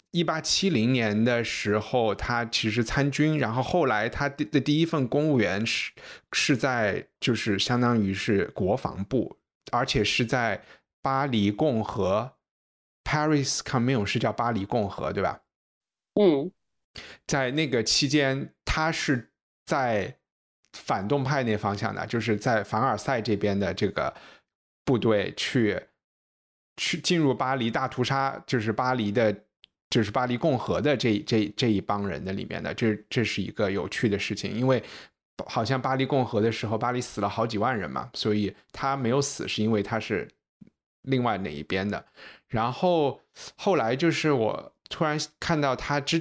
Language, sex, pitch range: Chinese, male, 105-135 Hz